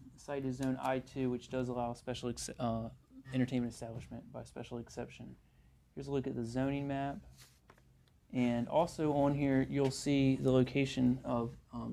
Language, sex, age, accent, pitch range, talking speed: English, male, 30-49, American, 120-135 Hz, 155 wpm